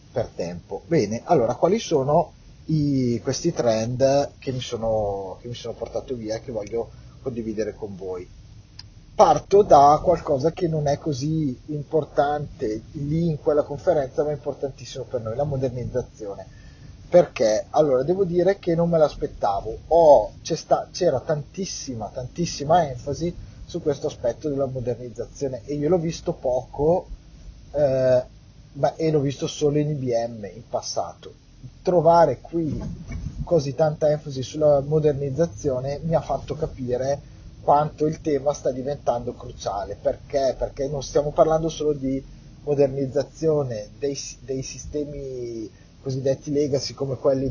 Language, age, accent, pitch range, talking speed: Italian, 30-49, native, 125-150 Hz, 135 wpm